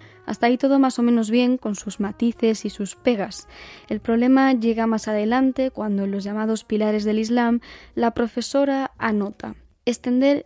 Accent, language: Spanish, Spanish